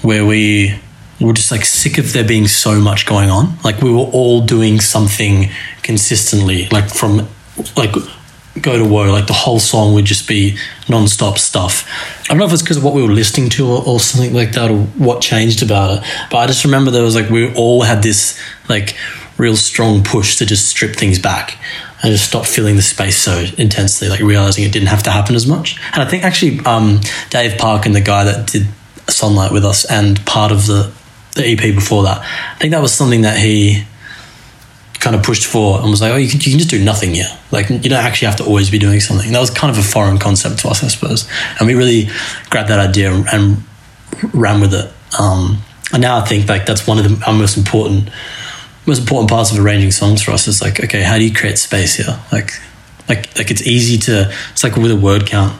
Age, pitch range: 20-39, 105-120 Hz